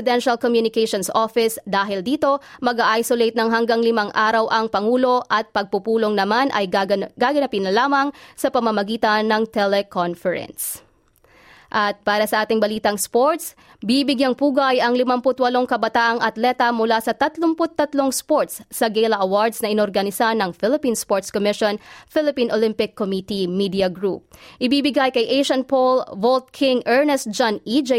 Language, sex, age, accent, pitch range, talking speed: Filipino, female, 20-39, native, 210-255 Hz, 135 wpm